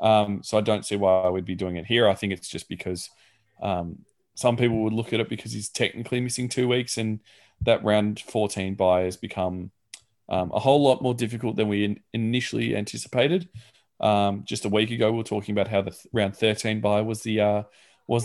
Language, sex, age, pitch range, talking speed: English, male, 20-39, 100-115 Hz, 215 wpm